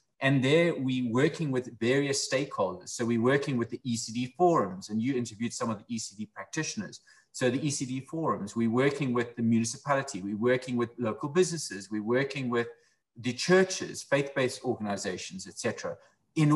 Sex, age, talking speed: male, 30-49, 165 wpm